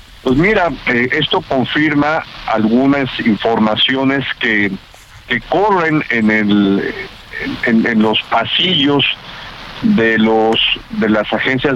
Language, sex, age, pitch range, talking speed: Spanish, male, 50-69, 110-140 Hz, 105 wpm